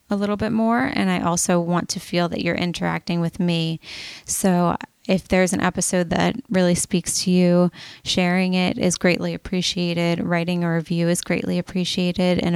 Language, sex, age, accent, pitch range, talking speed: English, female, 20-39, American, 170-195 Hz, 175 wpm